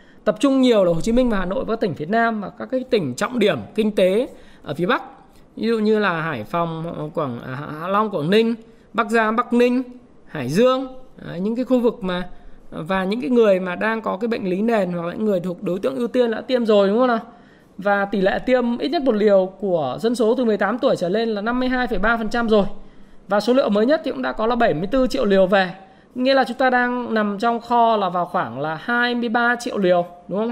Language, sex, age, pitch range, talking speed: Vietnamese, male, 20-39, 200-255 Hz, 240 wpm